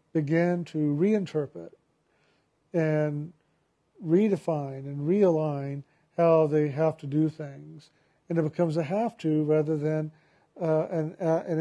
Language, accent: English, American